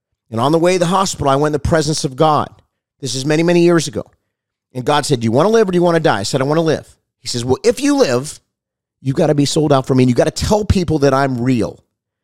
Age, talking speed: 30-49, 310 wpm